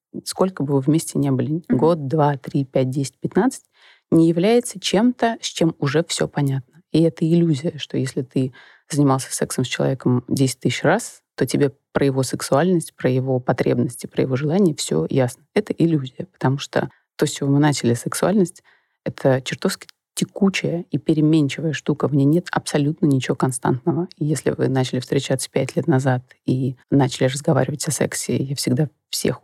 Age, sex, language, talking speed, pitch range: 30-49, female, Russian, 170 wpm, 135-165 Hz